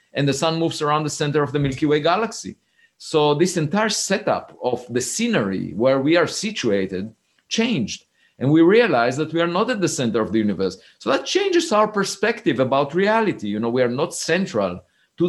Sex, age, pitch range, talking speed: male, 50-69, 130-195 Hz, 200 wpm